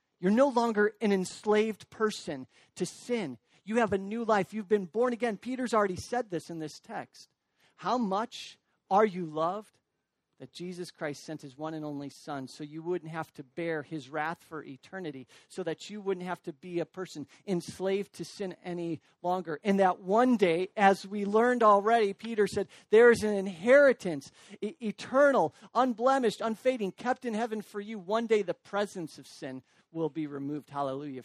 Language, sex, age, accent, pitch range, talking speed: English, male, 50-69, American, 160-215 Hz, 180 wpm